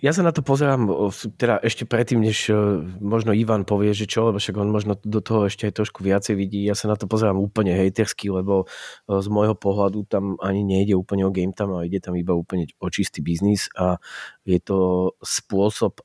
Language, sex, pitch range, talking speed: Slovak, male, 95-105 Hz, 200 wpm